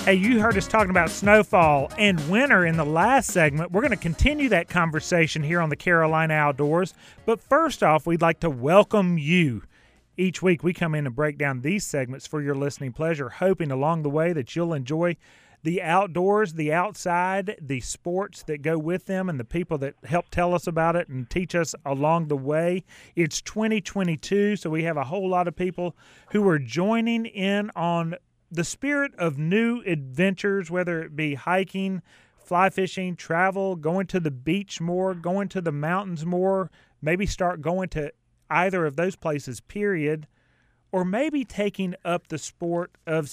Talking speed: 180 wpm